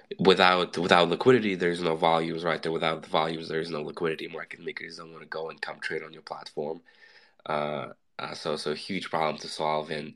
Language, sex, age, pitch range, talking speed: English, male, 20-39, 75-85 Hz, 220 wpm